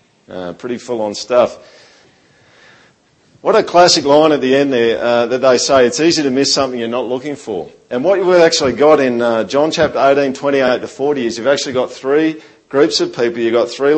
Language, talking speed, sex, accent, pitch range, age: English, 220 wpm, male, Australian, 120-145 Hz, 50-69